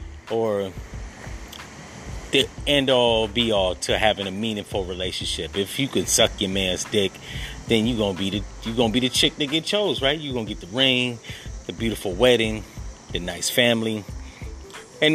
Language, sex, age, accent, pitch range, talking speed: English, male, 30-49, American, 100-130 Hz, 175 wpm